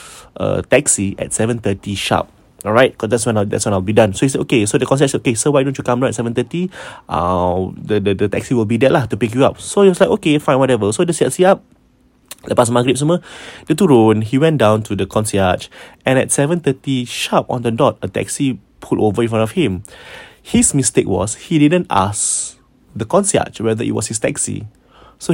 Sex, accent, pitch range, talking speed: male, Malaysian, 105-135 Hz, 220 wpm